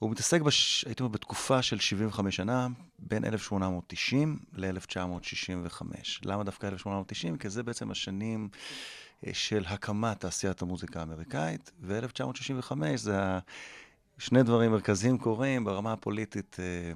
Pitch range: 95-115 Hz